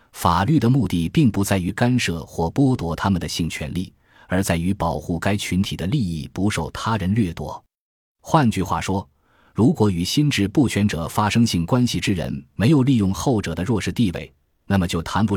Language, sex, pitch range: Chinese, male, 85-115 Hz